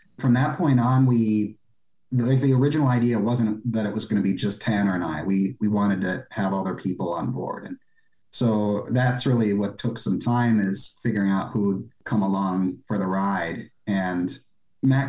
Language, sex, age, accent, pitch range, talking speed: English, male, 40-59, American, 100-120 Hz, 195 wpm